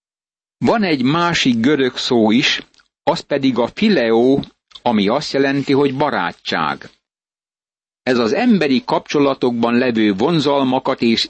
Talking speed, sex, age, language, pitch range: 115 wpm, male, 60-79, Hungarian, 120-145 Hz